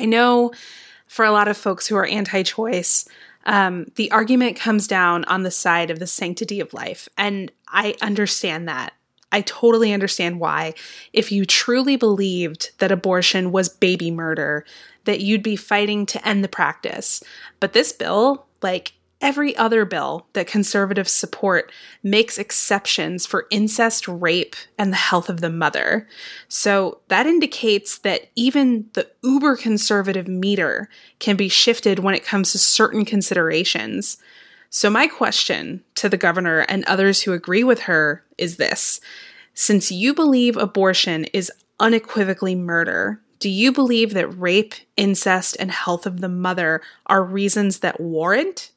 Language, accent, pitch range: English, American, 185-225 Hz